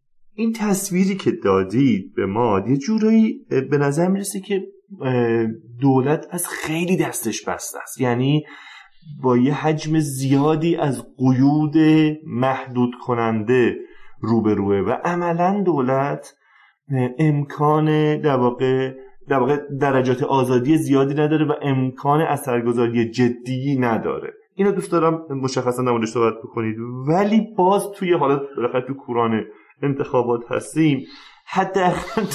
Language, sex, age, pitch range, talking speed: English, male, 30-49, 130-175 Hz, 115 wpm